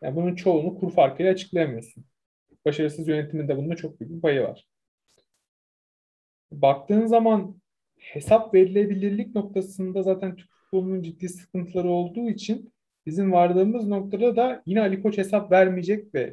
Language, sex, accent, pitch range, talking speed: Turkish, male, native, 175-215 Hz, 130 wpm